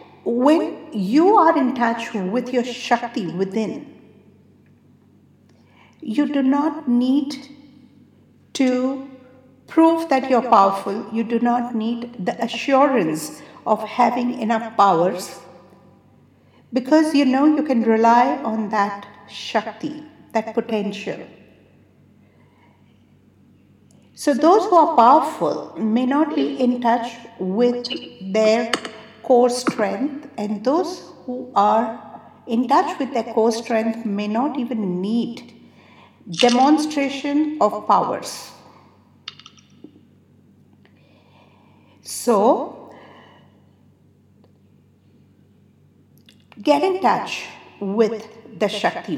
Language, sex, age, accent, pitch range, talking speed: English, female, 60-79, Indian, 225-275 Hz, 95 wpm